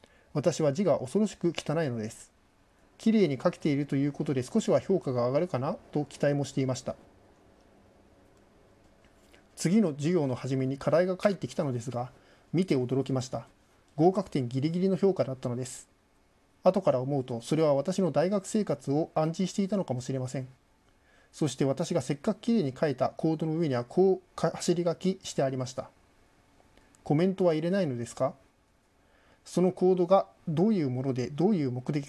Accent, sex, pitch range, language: native, male, 130-180 Hz, Japanese